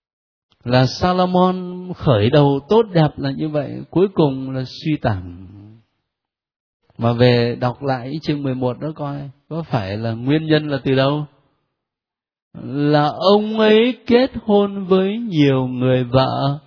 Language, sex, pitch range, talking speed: Vietnamese, male, 115-175 Hz, 140 wpm